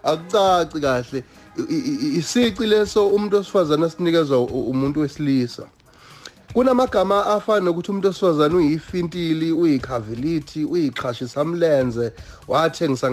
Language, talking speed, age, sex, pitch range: English, 100 wpm, 30-49, male, 140-190 Hz